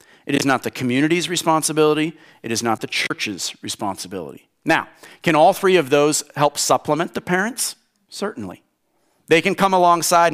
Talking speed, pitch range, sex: 155 wpm, 140-190 Hz, male